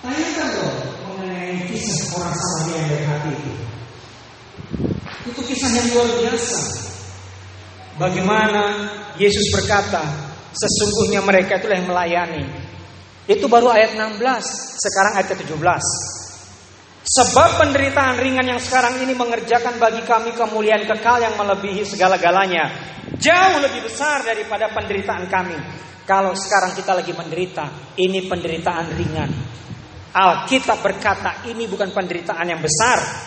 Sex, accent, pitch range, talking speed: male, native, 170-230 Hz, 110 wpm